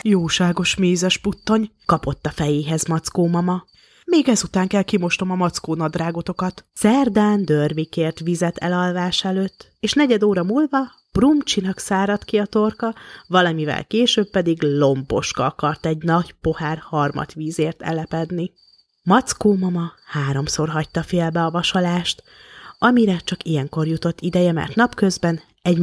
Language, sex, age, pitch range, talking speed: Hungarian, female, 30-49, 155-195 Hz, 130 wpm